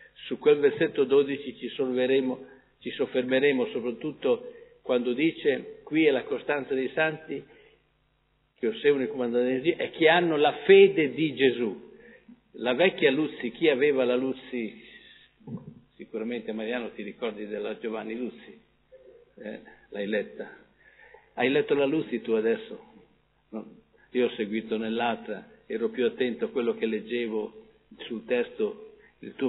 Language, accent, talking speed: Italian, native, 135 wpm